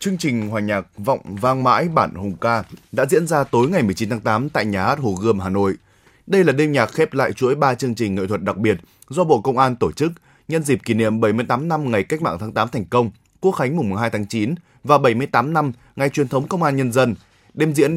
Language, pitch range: Vietnamese, 110-145 Hz